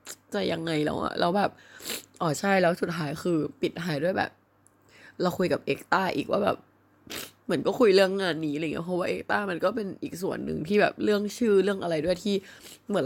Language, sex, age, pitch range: Thai, female, 20-39, 145-195 Hz